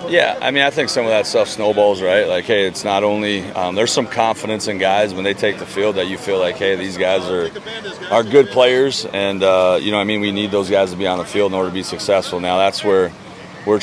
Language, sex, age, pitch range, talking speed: English, male, 30-49, 85-100 Hz, 270 wpm